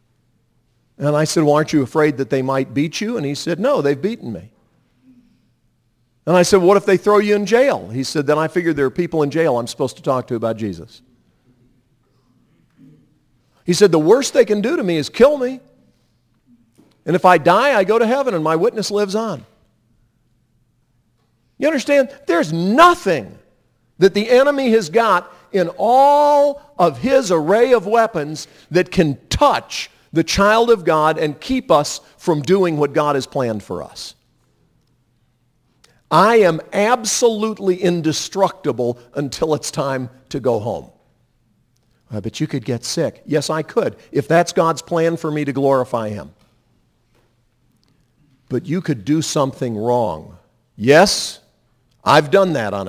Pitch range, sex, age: 125-190 Hz, male, 50-69